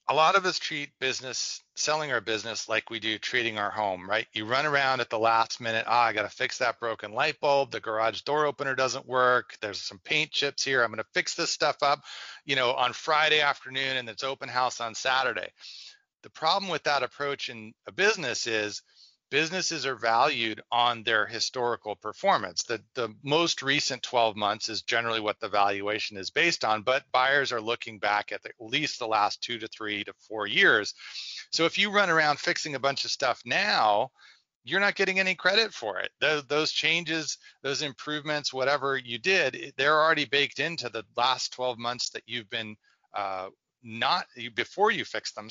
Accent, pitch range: American, 115-150 Hz